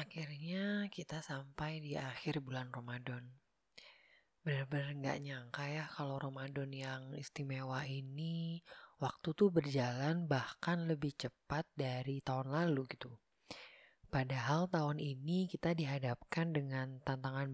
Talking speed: 115 wpm